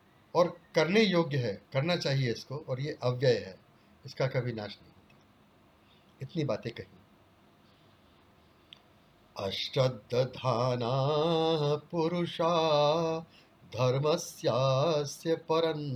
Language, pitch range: Hindi, 130-165 Hz